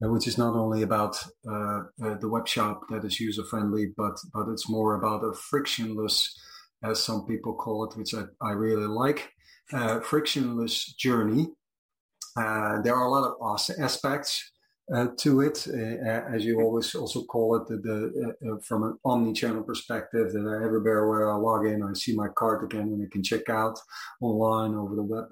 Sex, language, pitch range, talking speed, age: male, English, 105-115 Hz, 190 wpm, 30-49